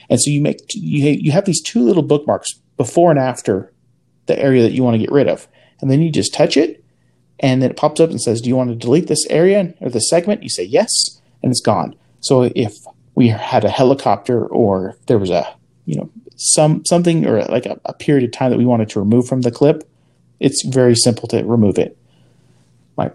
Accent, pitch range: American, 115-145 Hz